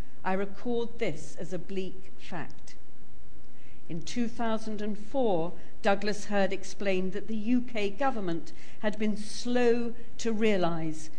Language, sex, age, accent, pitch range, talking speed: English, female, 50-69, British, 170-225 Hz, 115 wpm